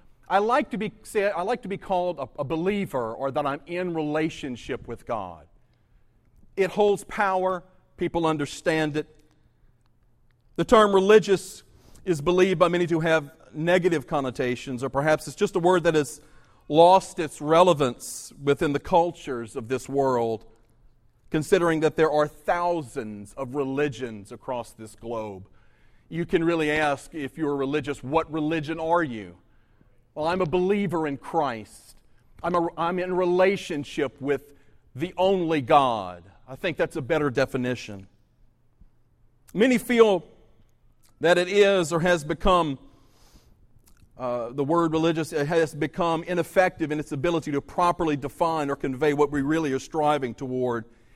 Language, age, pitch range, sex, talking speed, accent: English, 40-59, 120-170 Hz, male, 150 wpm, American